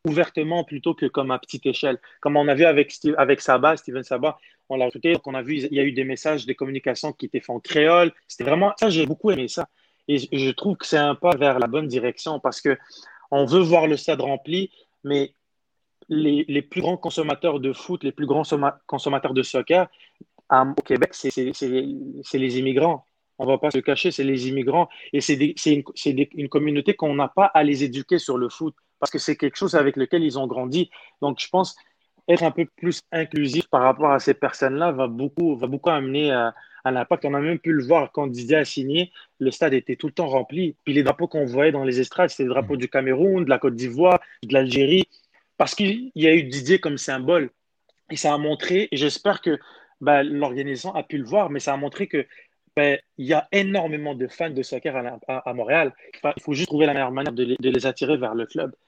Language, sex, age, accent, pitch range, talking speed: French, male, 30-49, French, 135-165 Hz, 235 wpm